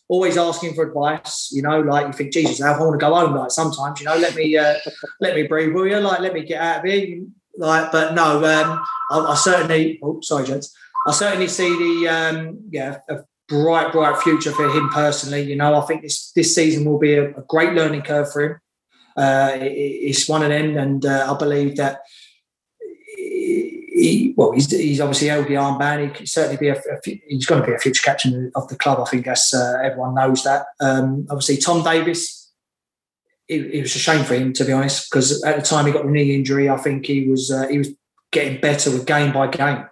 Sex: male